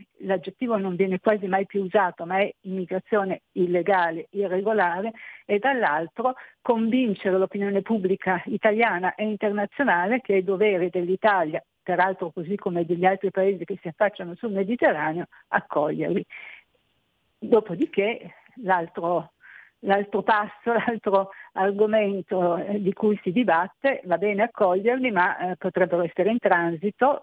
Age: 50-69